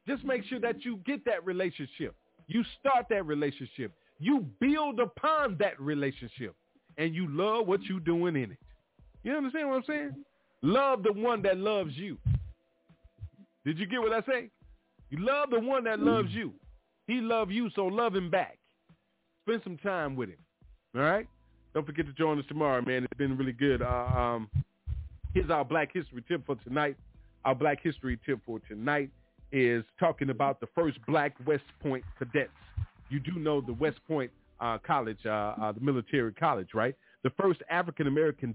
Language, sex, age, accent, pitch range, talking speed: English, male, 40-59, American, 125-180 Hz, 180 wpm